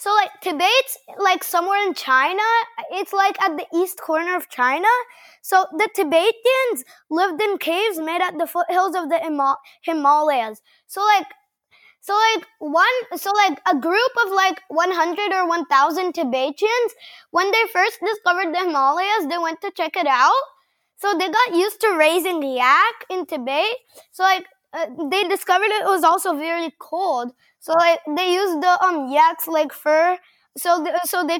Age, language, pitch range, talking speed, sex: 20-39, English, 325-400 Hz, 165 wpm, female